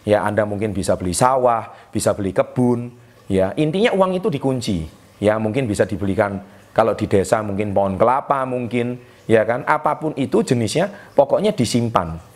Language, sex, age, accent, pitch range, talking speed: Indonesian, male, 30-49, native, 100-125 Hz, 155 wpm